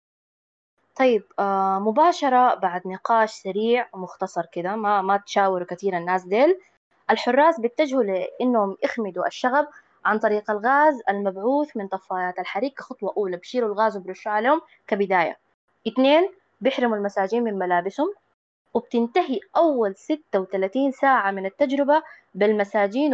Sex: female